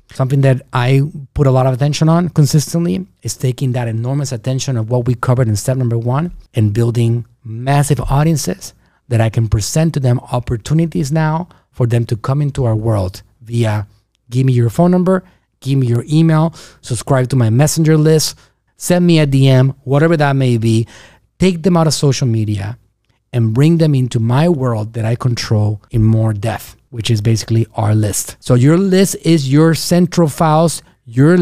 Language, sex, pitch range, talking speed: English, male, 115-155 Hz, 185 wpm